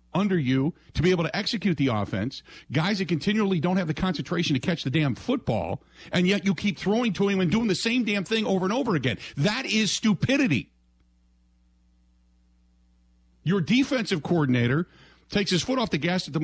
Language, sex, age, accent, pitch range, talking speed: English, male, 50-69, American, 110-180 Hz, 190 wpm